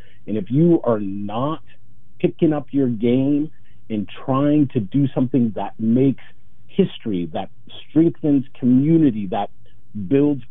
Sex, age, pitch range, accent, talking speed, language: male, 50-69, 105-135 Hz, American, 125 wpm, English